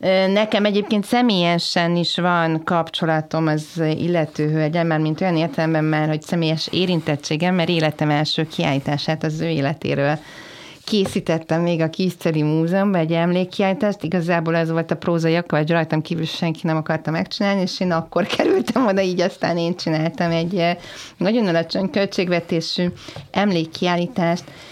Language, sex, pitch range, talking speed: Hungarian, female, 160-185 Hz, 140 wpm